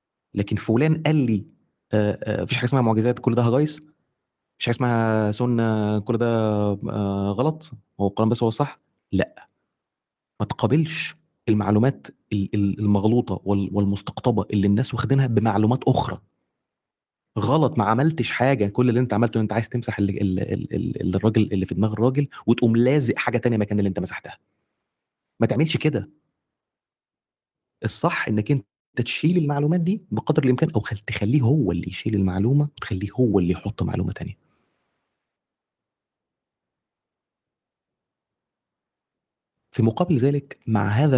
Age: 30-49